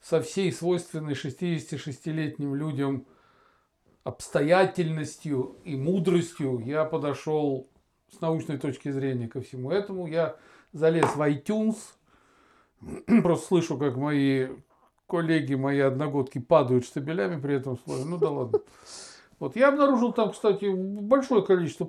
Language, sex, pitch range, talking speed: Russian, male, 145-185 Hz, 120 wpm